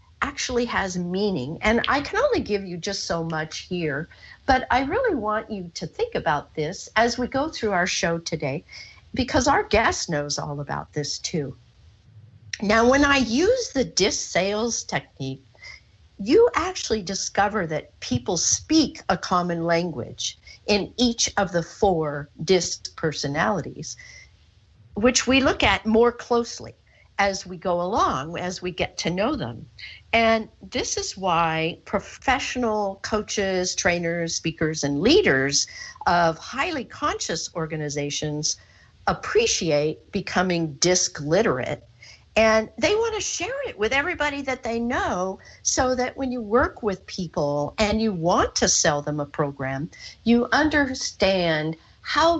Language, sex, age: English, female, 50-69